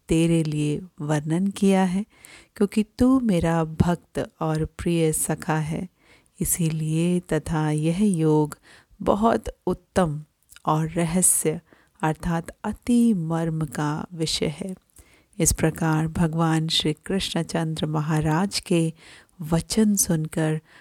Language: Hindi